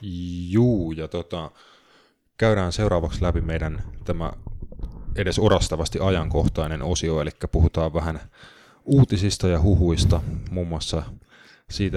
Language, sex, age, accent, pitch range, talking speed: Finnish, male, 20-39, native, 80-95 Hz, 110 wpm